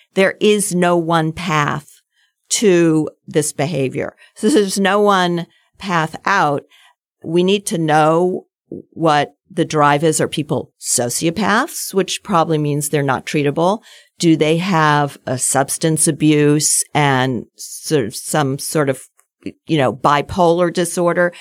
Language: English